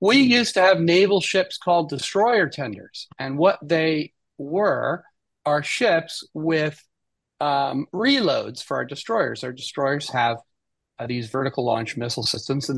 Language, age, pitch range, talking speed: English, 40-59, 135-190 Hz, 145 wpm